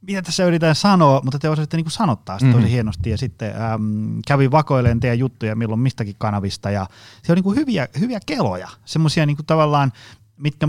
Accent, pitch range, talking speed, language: native, 110-140 Hz, 190 wpm, Finnish